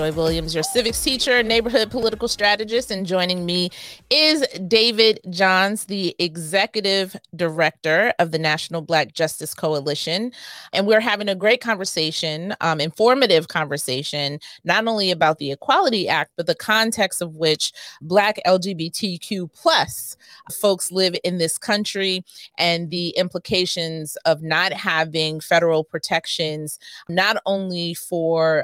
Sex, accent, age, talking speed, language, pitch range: female, American, 30-49, 125 wpm, English, 160-200 Hz